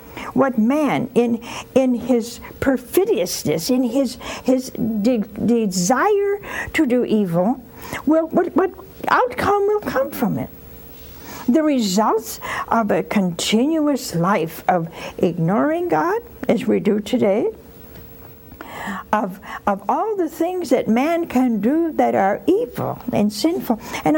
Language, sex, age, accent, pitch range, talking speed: English, female, 60-79, American, 195-300 Hz, 125 wpm